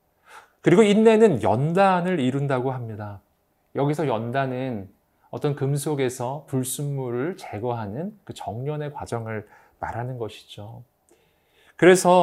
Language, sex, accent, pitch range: Korean, male, native, 110-150 Hz